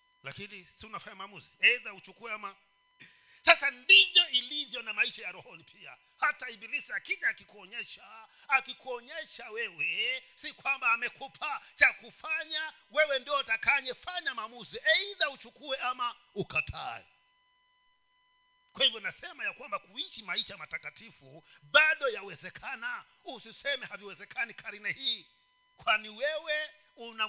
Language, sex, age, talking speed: Swahili, male, 50-69, 115 wpm